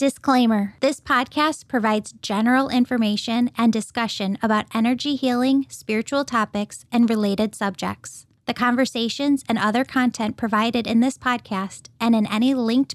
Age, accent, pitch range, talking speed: 10-29, American, 225-270 Hz, 135 wpm